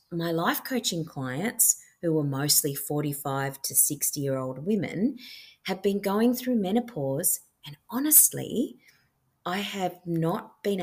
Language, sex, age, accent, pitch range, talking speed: English, female, 30-49, Australian, 145-200 Hz, 135 wpm